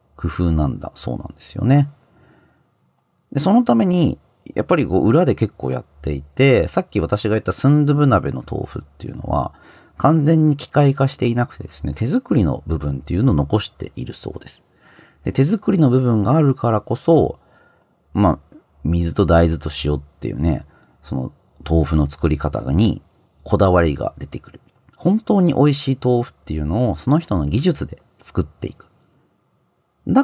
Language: Japanese